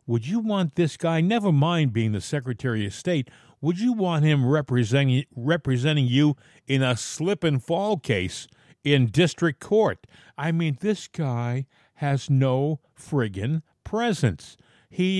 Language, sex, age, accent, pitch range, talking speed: English, male, 50-69, American, 130-170 Hz, 140 wpm